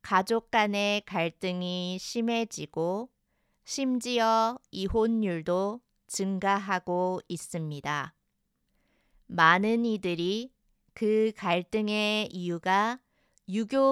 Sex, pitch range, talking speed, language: female, 180-240 Hz, 60 wpm, English